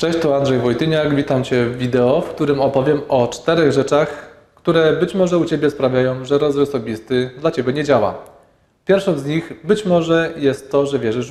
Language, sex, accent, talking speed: Polish, male, native, 190 wpm